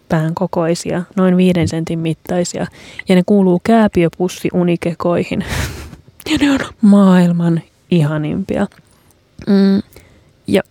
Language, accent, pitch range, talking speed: Finnish, native, 175-195 Hz, 85 wpm